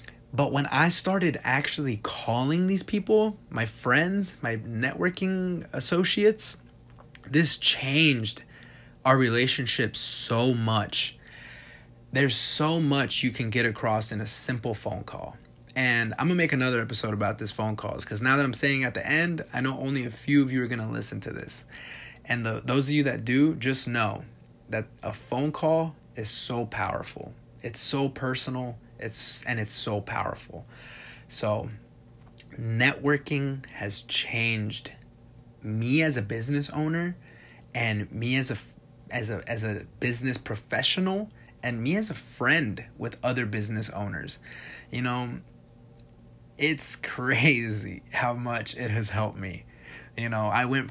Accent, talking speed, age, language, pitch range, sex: American, 150 wpm, 20-39, English, 115-140 Hz, male